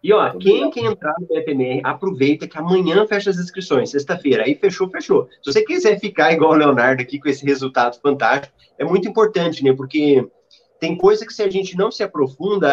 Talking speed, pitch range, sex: 205 wpm, 145-205 Hz, male